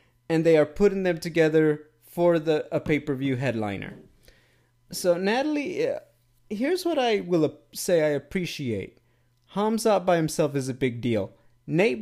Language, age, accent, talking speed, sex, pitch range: English, 30-49, American, 140 wpm, male, 125-185 Hz